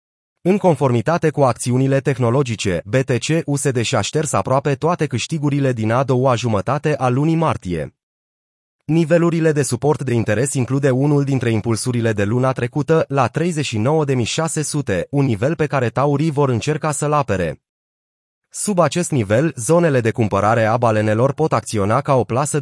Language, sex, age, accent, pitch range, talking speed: Romanian, male, 30-49, native, 115-150 Hz, 145 wpm